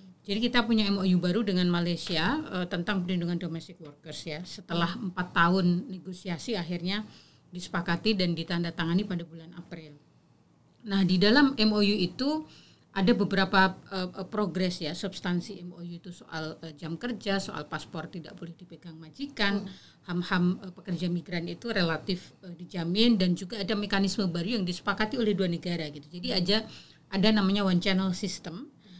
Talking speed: 150 wpm